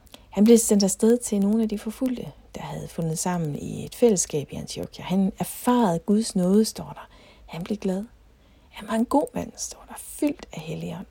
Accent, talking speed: native, 205 wpm